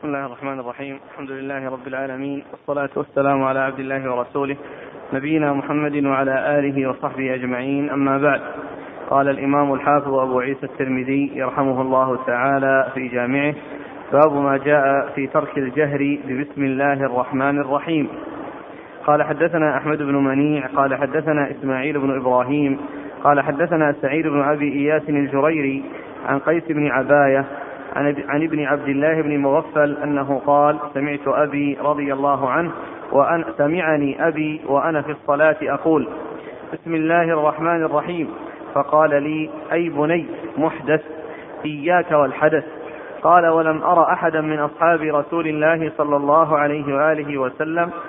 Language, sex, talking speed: Arabic, male, 135 wpm